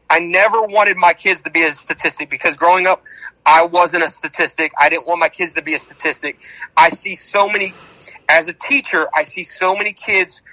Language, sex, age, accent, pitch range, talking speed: English, male, 30-49, American, 155-190 Hz, 210 wpm